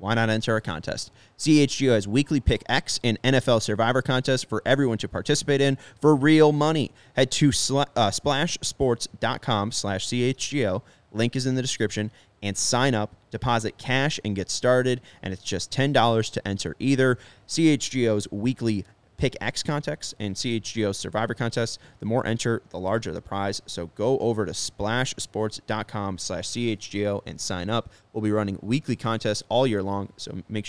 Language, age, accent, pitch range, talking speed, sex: English, 20-39, American, 100-125 Hz, 160 wpm, male